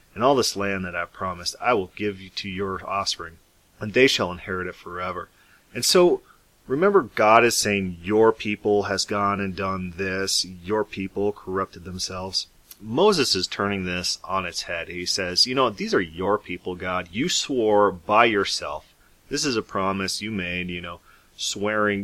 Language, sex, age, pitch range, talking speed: English, male, 30-49, 90-105 Hz, 180 wpm